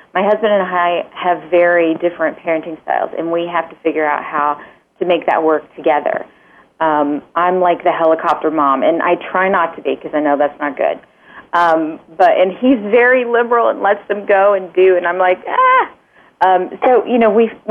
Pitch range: 165-205 Hz